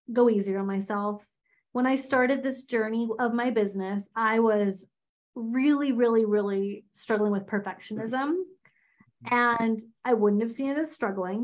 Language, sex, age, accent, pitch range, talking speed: English, female, 30-49, American, 210-265 Hz, 145 wpm